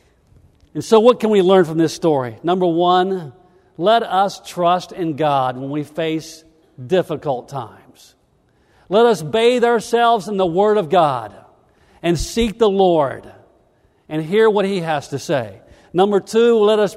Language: English